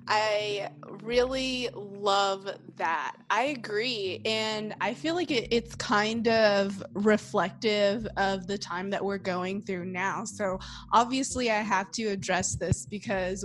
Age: 20-39